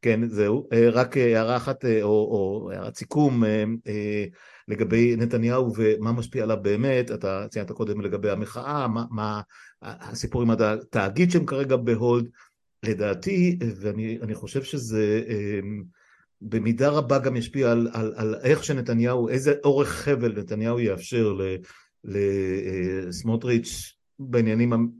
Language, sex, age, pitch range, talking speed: Hebrew, male, 50-69, 105-125 Hz, 120 wpm